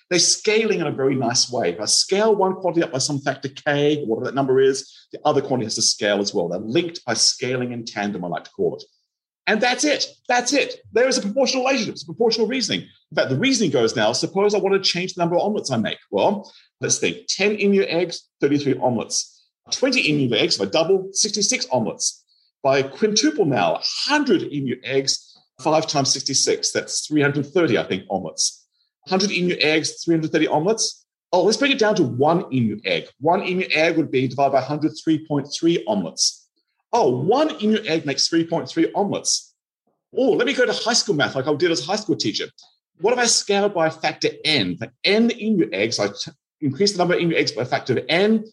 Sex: male